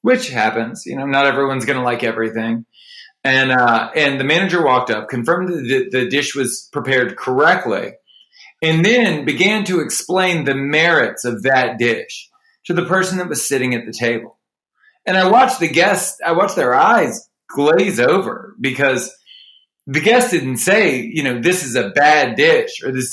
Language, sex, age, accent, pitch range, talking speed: English, male, 20-39, American, 130-200 Hz, 175 wpm